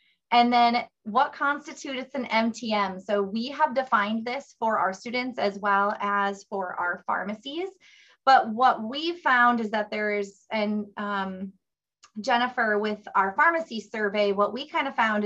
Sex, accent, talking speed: female, American, 155 wpm